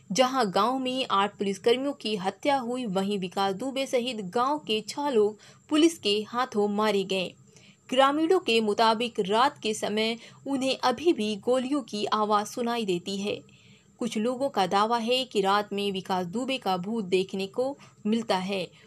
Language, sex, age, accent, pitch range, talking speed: Hindi, female, 20-39, native, 200-255 Hz, 165 wpm